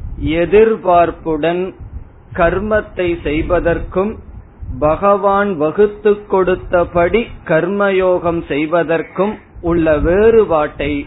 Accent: native